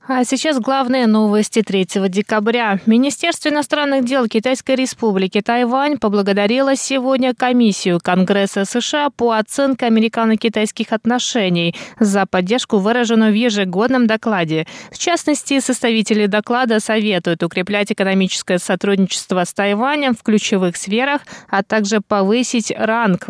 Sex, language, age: female, Russian, 20-39